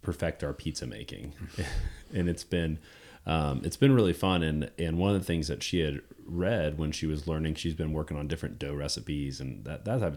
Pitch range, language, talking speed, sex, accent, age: 70-85 Hz, English, 220 wpm, male, American, 30-49